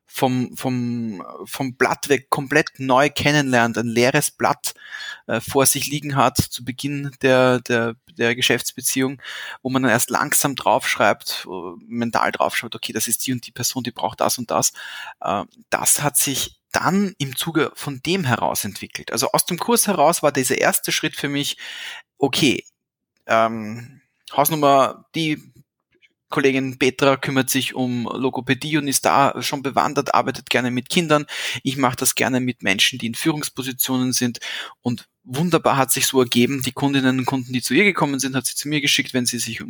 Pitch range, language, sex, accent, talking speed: 120-140 Hz, German, male, German, 175 wpm